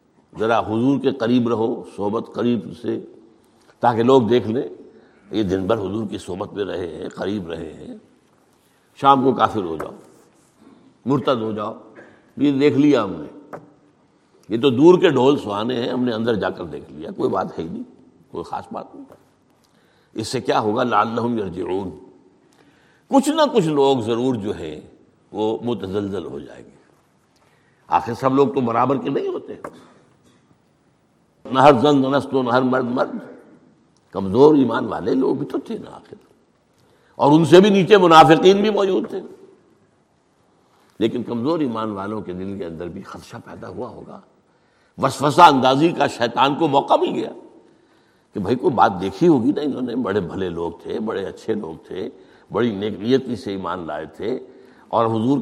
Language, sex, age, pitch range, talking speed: Urdu, male, 60-79, 110-140 Hz, 160 wpm